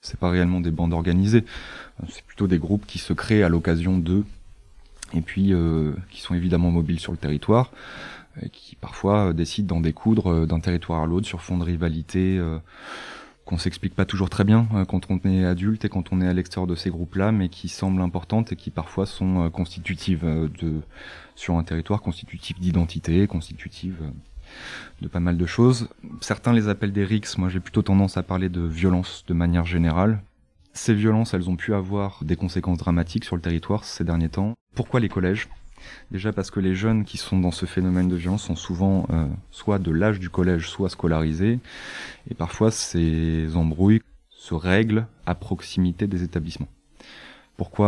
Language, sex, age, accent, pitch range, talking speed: French, male, 20-39, French, 85-100 Hz, 190 wpm